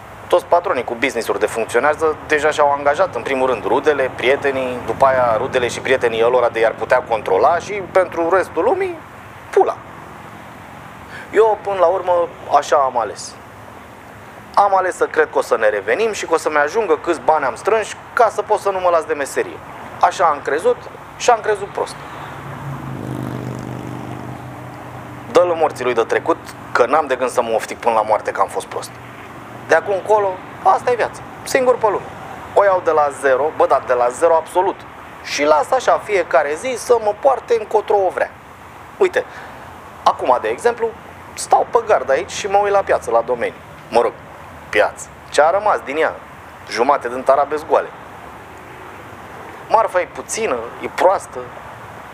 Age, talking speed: 30-49, 170 wpm